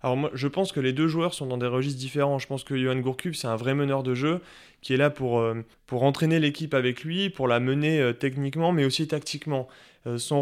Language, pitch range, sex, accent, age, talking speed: French, 120-145 Hz, male, French, 20-39, 255 wpm